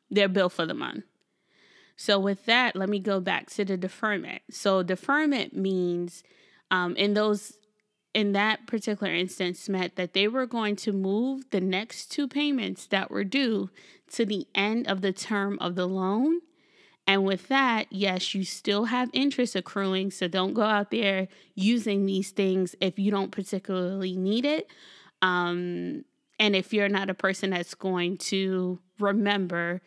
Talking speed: 165 wpm